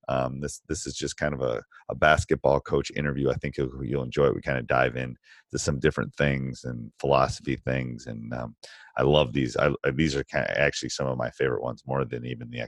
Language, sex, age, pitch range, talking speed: English, male, 30-49, 65-80 Hz, 235 wpm